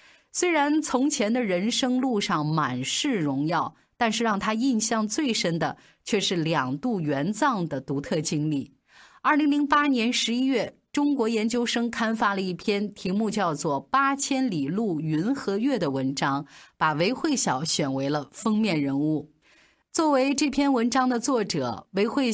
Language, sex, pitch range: Chinese, female, 155-240 Hz